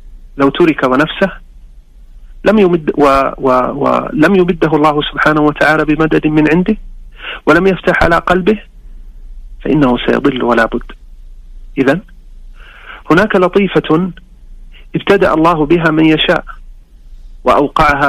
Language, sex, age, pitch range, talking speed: Arabic, male, 40-59, 115-165 Hz, 100 wpm